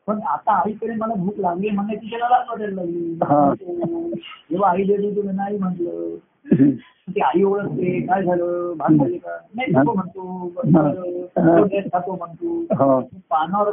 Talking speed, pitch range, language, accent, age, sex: 105 wpm, 160-215 Hz, Marathi, native, 50-69, male